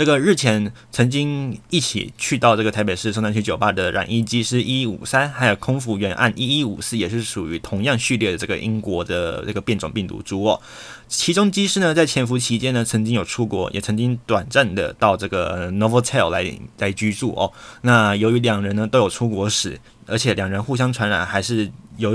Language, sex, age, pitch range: Chinese, male, 20-39, 105-130 Hz